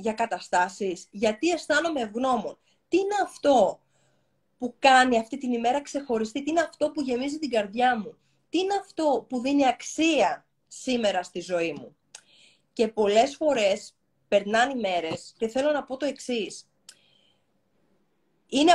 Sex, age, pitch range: female, 20-39, 205-280 Hz